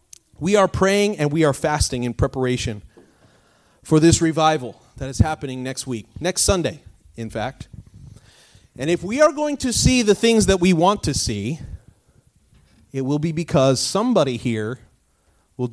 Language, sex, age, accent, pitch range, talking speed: English, male, 30-49, American, 110-160 Hz, 160 wpm